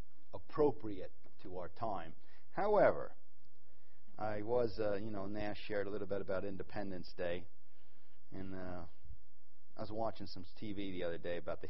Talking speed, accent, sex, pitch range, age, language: 155 wpm, American, male, 90-135 Hz, 40-59, English